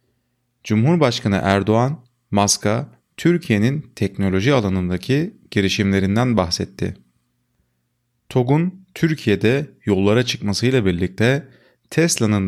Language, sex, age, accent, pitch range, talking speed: Turkish, male, 30-49, native, 95-130 Hz, 65 wpm